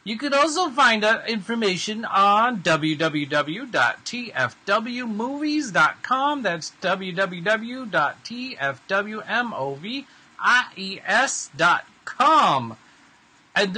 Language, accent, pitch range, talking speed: English, American, 160-245 Hz, 50 wpm